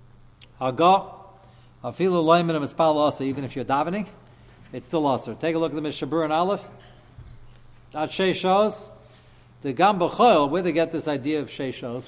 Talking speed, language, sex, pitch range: 140 wpm, English, male, 130-175 Hz